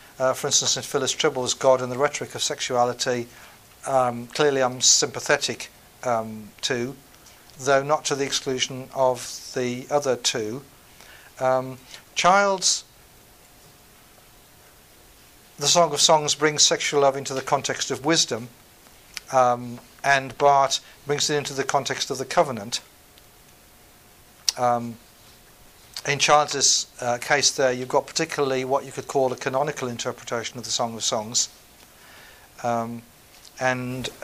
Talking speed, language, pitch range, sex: 130 wpm, English, 125-140 Hz, male